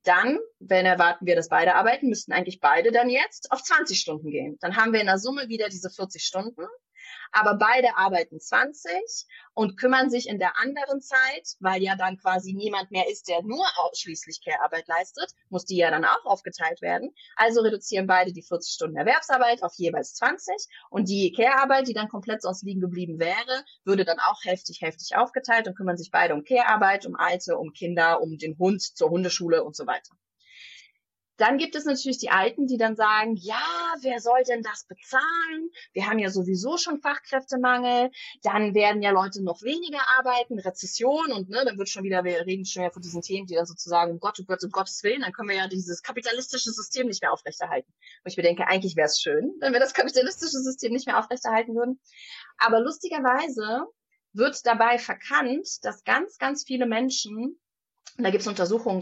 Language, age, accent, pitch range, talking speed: German, 30-49, German, 185-260 Hz, 195 wpm